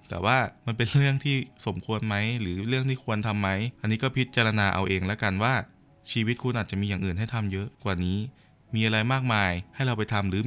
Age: 20-39